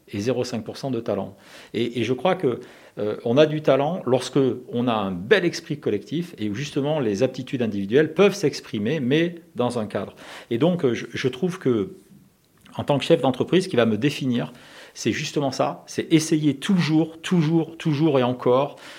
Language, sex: French, male